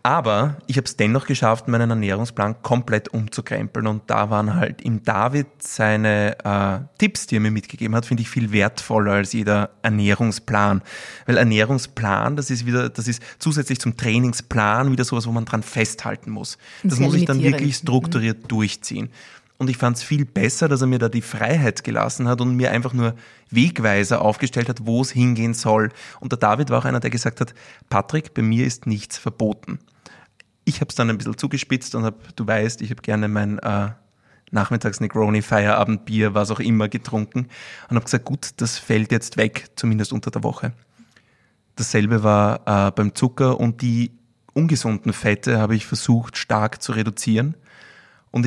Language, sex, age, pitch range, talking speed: German, male, 20-39, 110-125 Hz, 180 wpm